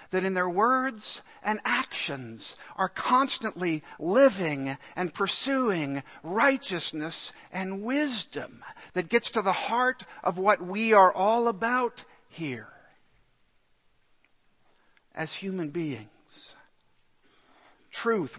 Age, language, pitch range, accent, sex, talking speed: 60-79, English, 160-210 Hz, American, male, 100 wpm